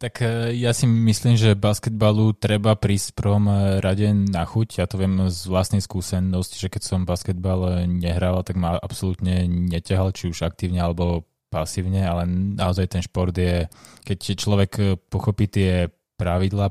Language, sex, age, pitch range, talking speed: Slovak, male, 20-39, 90-105 Hz, 150 wpm